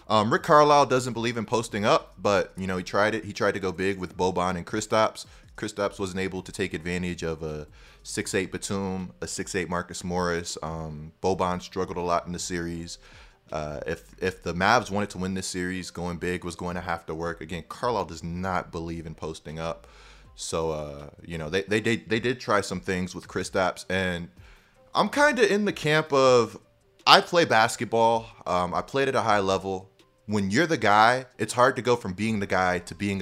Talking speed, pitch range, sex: 210 wpm, 90-120 Hz, male